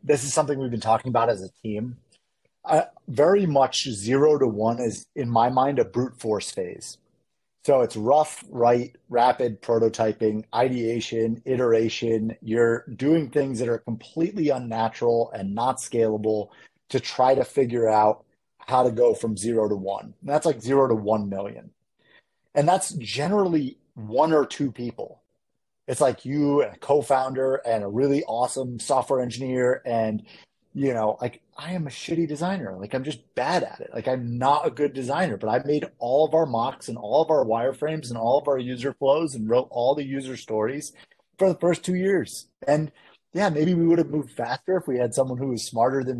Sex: male